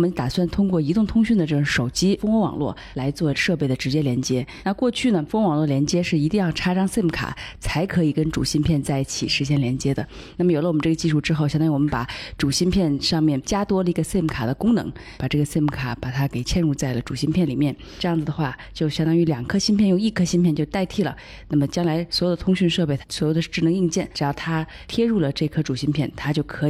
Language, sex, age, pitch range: Chinese, female, 20-39, 145-180 Hz